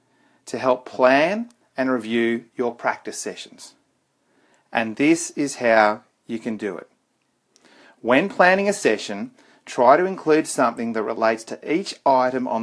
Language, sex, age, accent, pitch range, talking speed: English, male, 40-59, Australian, 115-155 Hz, 145 wpm